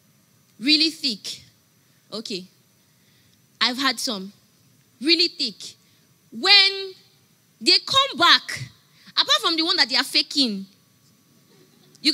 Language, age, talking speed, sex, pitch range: English, 20-39, 105 wpm, female, 230-370 Hz